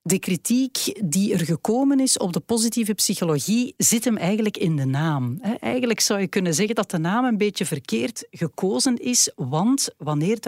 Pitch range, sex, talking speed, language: 155-215 Hz, female, 175 wpm, Dutch